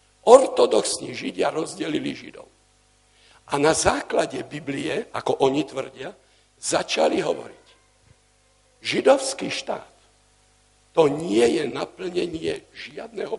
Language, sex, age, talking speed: Slovak, male, 60-79, 95 wpm